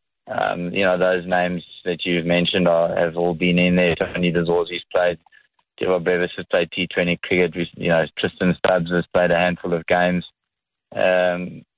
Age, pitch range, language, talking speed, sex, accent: 20-39, 85-95 Hz, English, 175 wpm, male, Australian